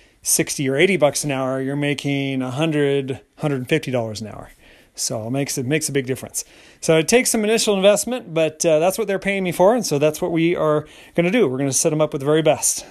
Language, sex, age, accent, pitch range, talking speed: English, male, 30-49, American, 130-160 Hz, 265 wpm